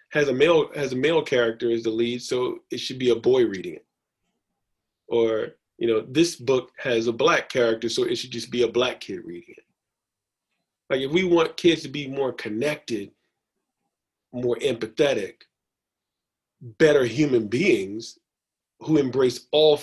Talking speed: 165 wpm